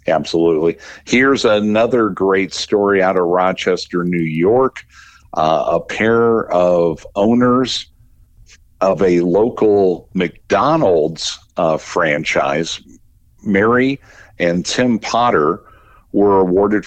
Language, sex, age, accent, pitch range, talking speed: English, male, 50-69, American, 85-105 Hz, 95 wpm